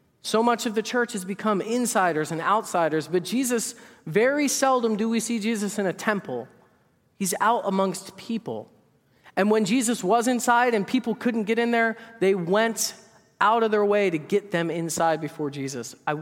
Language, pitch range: English, 170-225 Hz